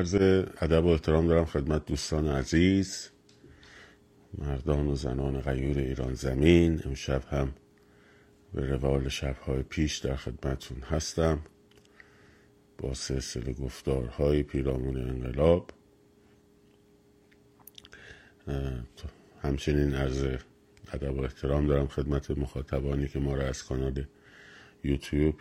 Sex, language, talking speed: male, Persian, 100 wpm